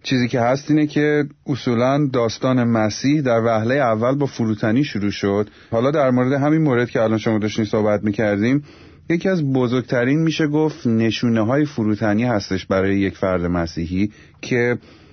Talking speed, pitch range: 165 wpm, 110-130 Hz